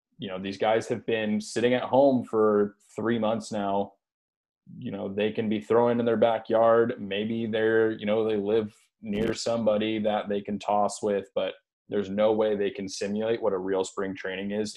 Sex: male